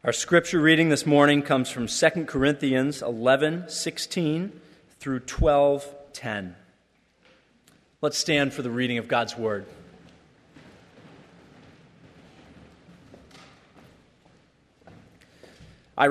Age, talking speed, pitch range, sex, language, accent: 40-59, 80 wpm, 130-165 Hz, male, English, American